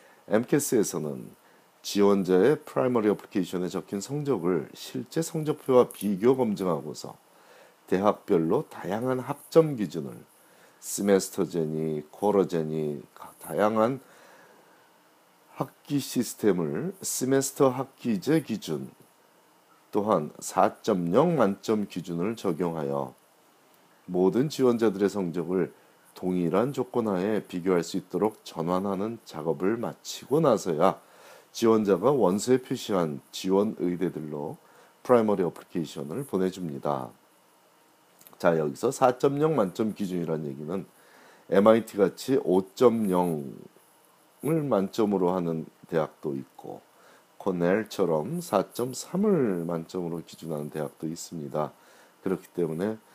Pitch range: 85-120 Hz